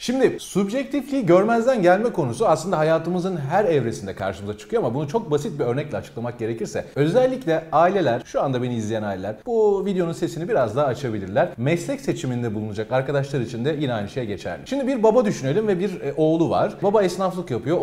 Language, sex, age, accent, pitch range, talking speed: Turkish, male, 40-59, native, 125-195 Hz, 180 wpm